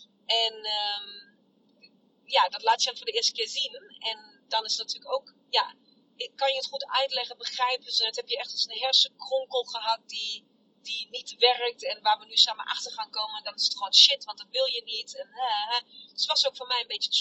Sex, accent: female, Dutch